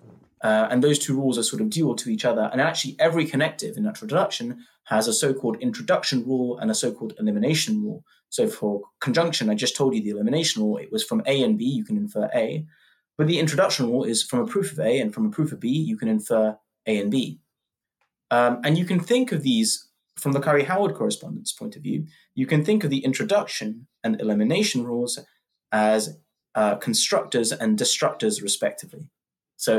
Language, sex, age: English, male, 20-39